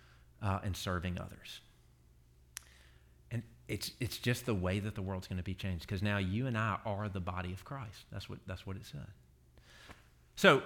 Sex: male